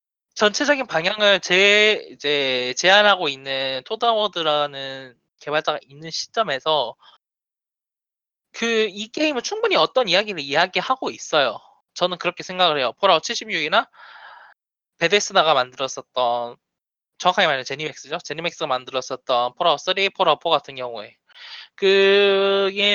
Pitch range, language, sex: 145-225 Hz, Korean, male